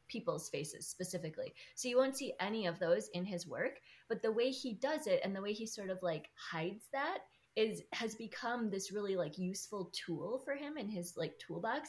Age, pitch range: 20-39, 160-205 Hz